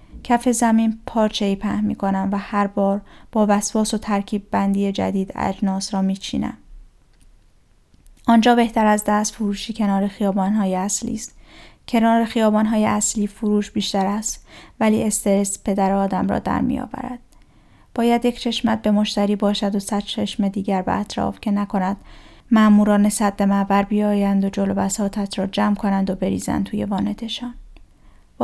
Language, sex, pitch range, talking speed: Persian, female, 200-225 Hz, 155 wpm